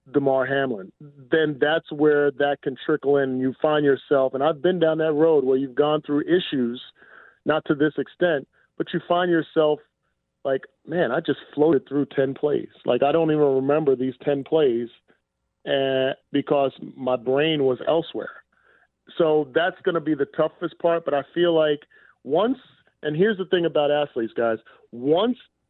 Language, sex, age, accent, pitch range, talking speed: English, male, 40-59, American, 135-160 Hz, 170 wpm